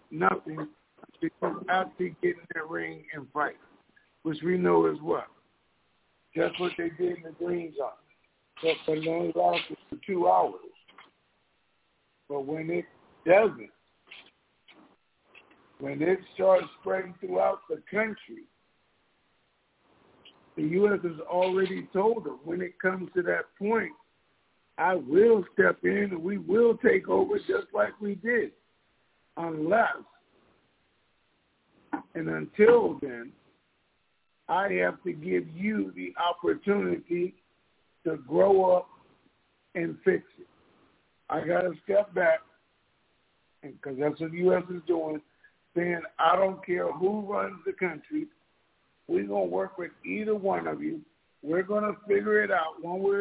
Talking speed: 135 wpm